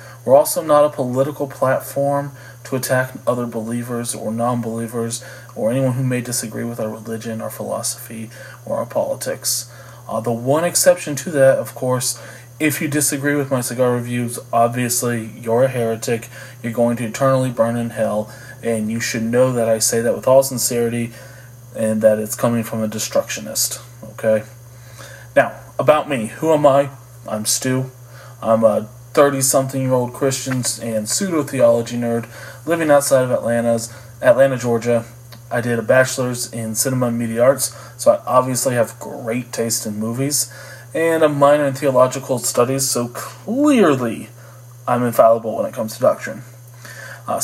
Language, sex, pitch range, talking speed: English, male, 115-130 Hz, 155 wpm